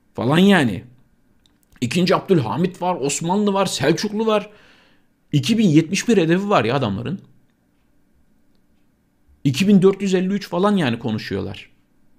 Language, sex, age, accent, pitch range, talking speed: Turkish, male, 50-69, native, 120-190 Hz, 90 wpm